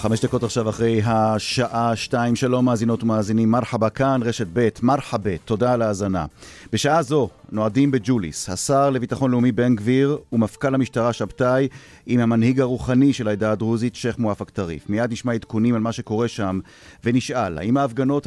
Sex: male